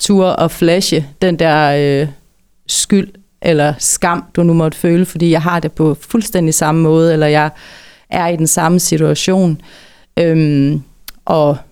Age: 30-49